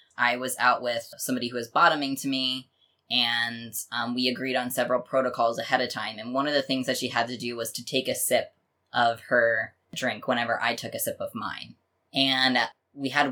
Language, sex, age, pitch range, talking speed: English, female, 10-29, 120-135 Hz, 215 wpm